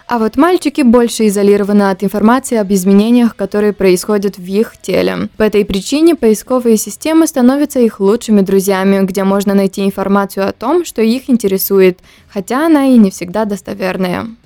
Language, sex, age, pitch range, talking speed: Romanian, female, 20-39, 200-255 Hz, 160 wpm